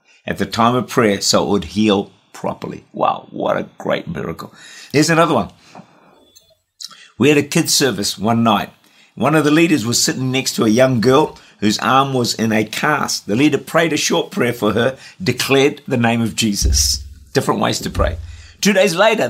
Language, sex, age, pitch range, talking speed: English, male, 50-69, 110-150 Hz, 195 wpm